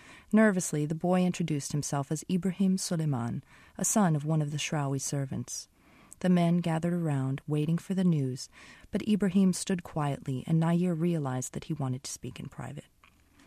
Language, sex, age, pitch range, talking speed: English, female, 30-49, 140-175 Hz, 170 wpm